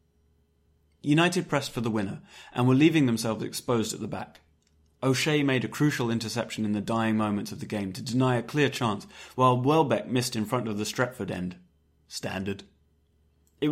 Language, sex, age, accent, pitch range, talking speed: English, male, 30-49, British, 95-130 Hz, 180 wpm